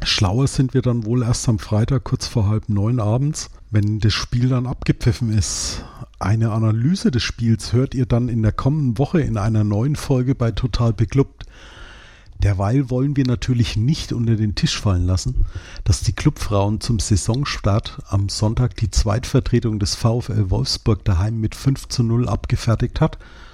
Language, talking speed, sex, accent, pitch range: German, 170 wpm, male, German, 105-125 Hz